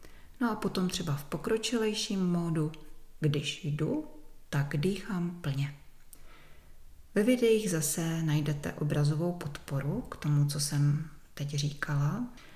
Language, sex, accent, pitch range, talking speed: Czech, female, native, 150-170 Hz, 115 wpm